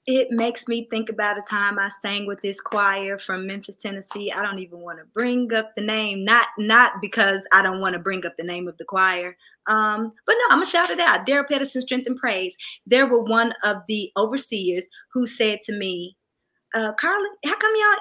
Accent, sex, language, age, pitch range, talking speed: American, female, English, 20-39, 215-280 Hz, 225 wpm